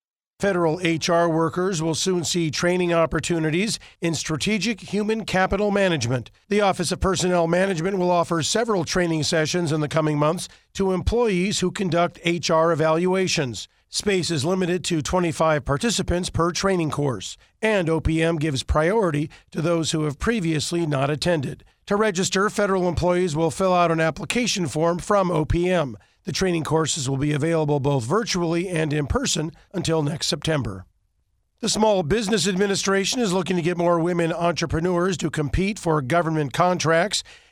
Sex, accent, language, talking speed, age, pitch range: male, American, English, 150 wpm, 50-69, 160-190 Hz